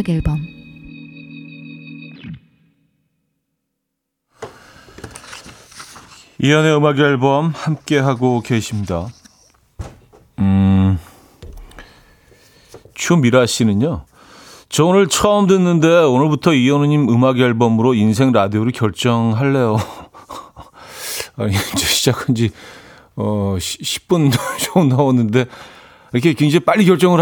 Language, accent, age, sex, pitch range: Korean, native, 40-59, male, 105-155 Hz